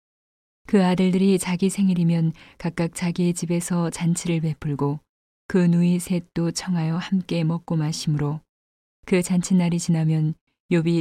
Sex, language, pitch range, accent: female, Korean, 155-180 Hz, native